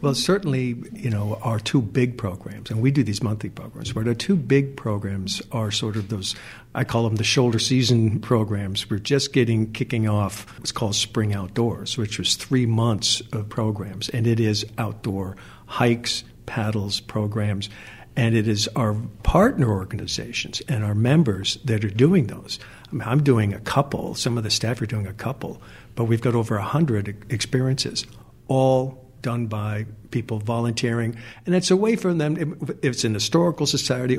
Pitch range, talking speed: 110-130 Hz, 175 wpm